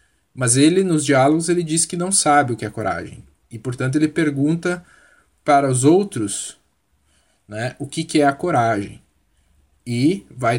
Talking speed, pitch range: 165 wpm, 120-165 Hz